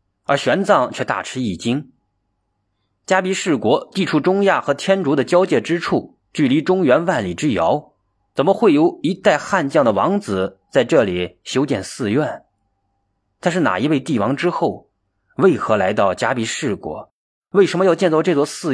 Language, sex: Chinese, male